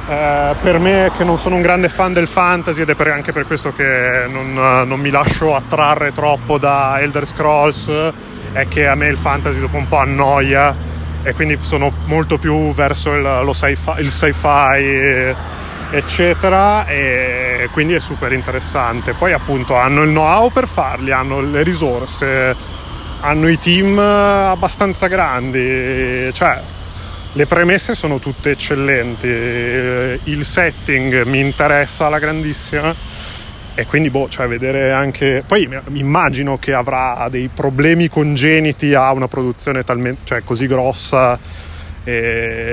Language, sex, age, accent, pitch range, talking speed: Italian, male, 20-39, native, 120-150 Hz, 145 wpm